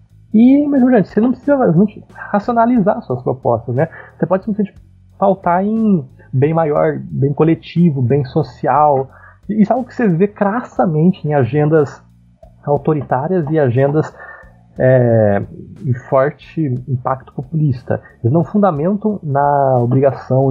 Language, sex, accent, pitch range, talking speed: Portuguese, male, Brazilian, 120-160 Hz, 140 wpm